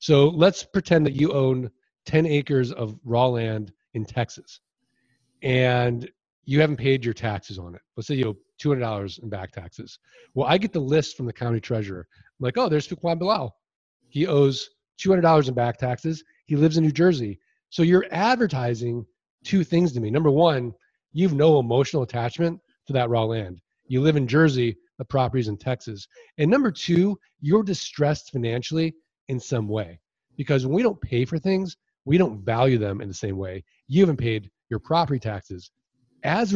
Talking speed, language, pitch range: 180 wpm, English, 120-160 Hz